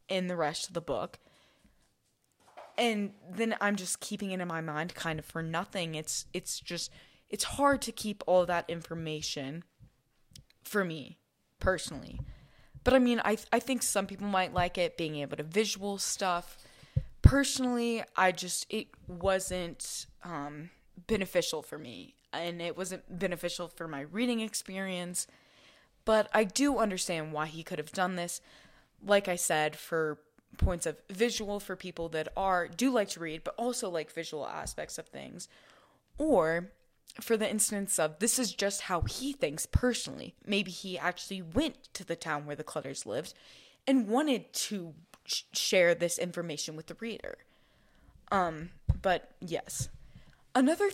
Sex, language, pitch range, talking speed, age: female, English, 165-220 Hz, 160 wpm, 20-39